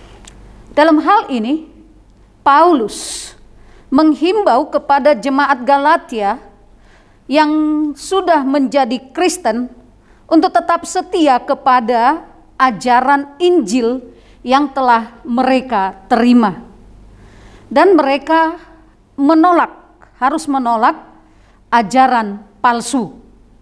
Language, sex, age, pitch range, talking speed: Indonesian, female, 40-59, 235-325 Hz, 75 wpm